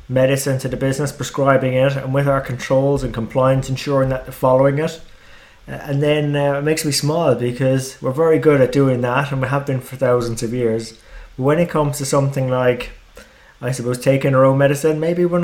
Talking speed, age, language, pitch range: 210 wpm, 20-39, English, 125-155 Hz